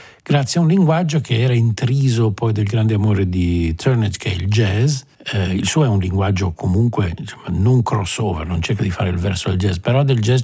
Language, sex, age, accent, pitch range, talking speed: Italian, male, 50-69, native, 95-130 Hz, 220 wpm